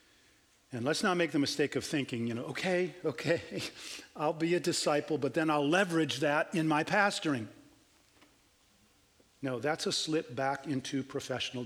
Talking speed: 160 wpm